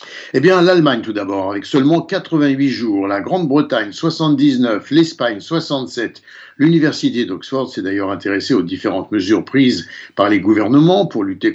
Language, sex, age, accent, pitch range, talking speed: Italian, male, 60-79, French, 140-200 Hz, 145 wpm